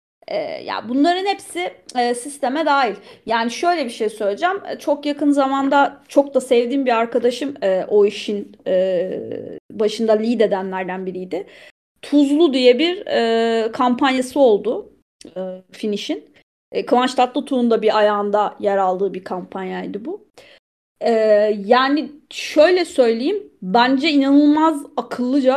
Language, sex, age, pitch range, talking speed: Turkish, female, 30-49, 215-290 Hz, 125 wpm